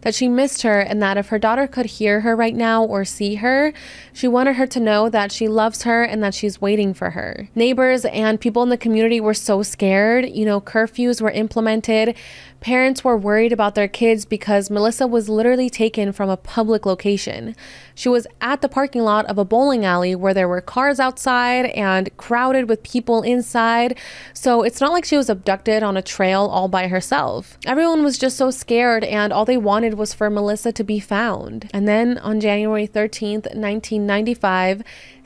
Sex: female